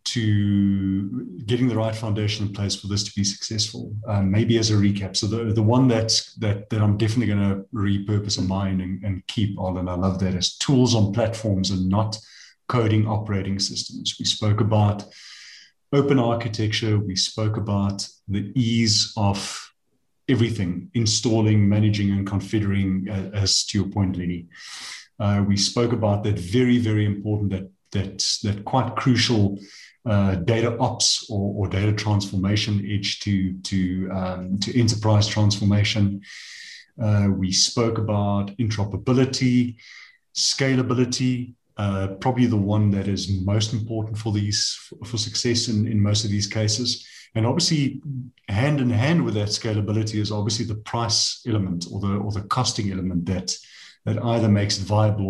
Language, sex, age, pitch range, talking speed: English, male, 30-49, 100-115 Hz, 155 wpm